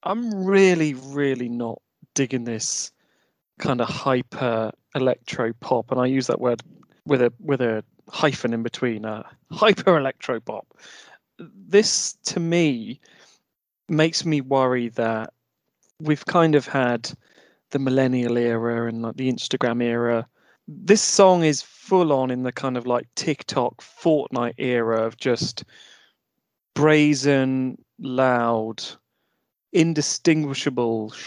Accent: British